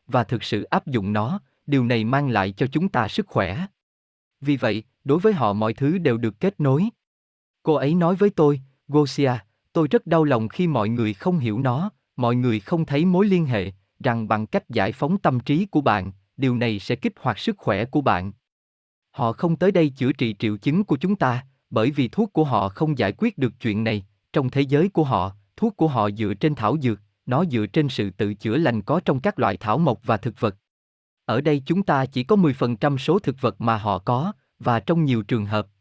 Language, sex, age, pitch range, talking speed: Vietnamese, male, 20-39, 110-155 Hz, 225 wpm